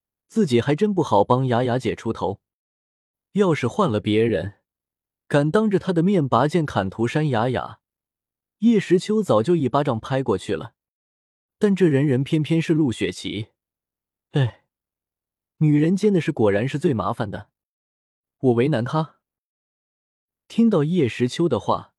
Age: 20-39